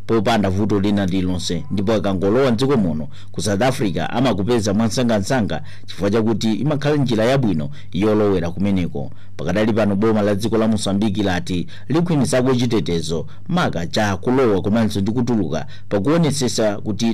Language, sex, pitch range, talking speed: English, male, 100-130 Hz, 135 wpm